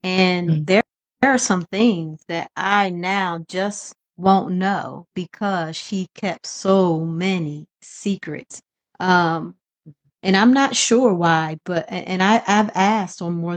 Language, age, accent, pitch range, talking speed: English, 30-49, American, 170-205 Hz, 135 wpm